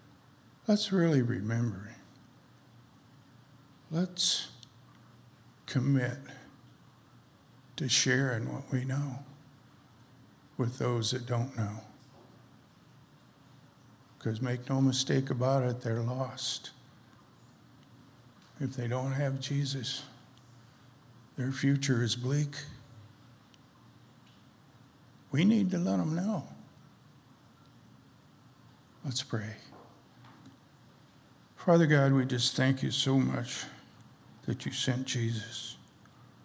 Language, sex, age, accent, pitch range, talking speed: English, male, 60-79, American, 115-135 Hz, 85 wpm